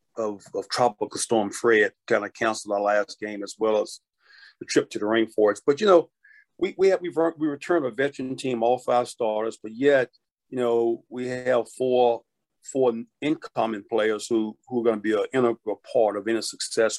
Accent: American